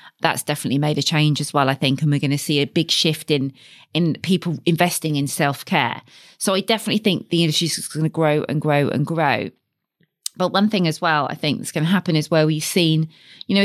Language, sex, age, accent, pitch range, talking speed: English, female, 30-49, British, 150-185 Hz, 235 wpm